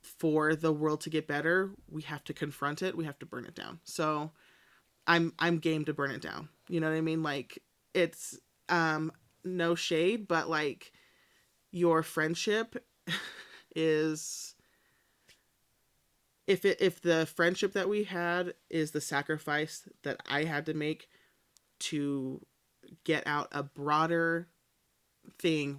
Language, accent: English, American